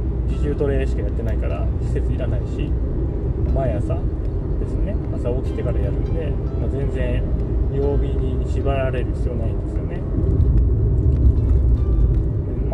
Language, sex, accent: Japanese, male, native